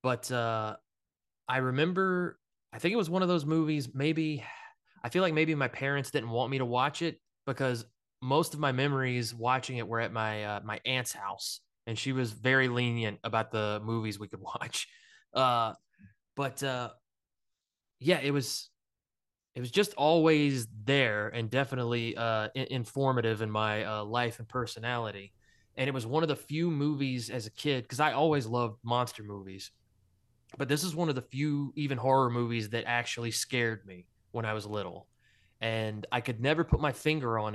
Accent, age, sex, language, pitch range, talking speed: American, 20-39, male, English, 110-135 Hz, 185 wpm